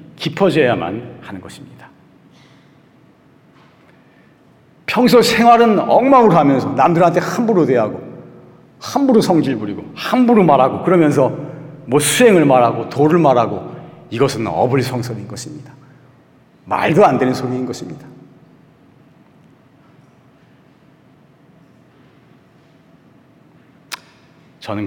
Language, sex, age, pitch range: Korean, male, 40-59, 120-175 Hz